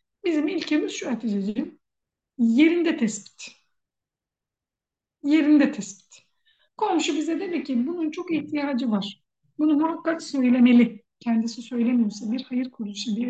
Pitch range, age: 230-305 Hz, 60-79